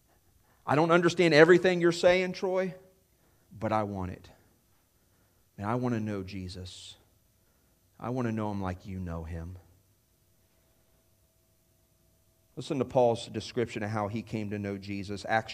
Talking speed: 145 wpm